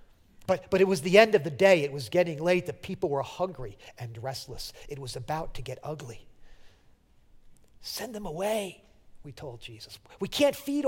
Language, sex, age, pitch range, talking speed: English, male, 40-59, 130-205 Hz, 190 wpm